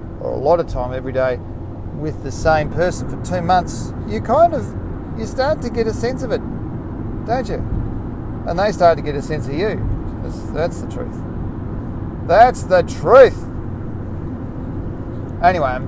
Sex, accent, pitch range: male, Australian, 115-150 Hz